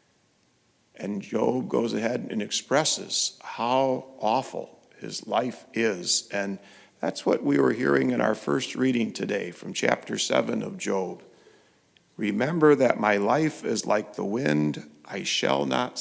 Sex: male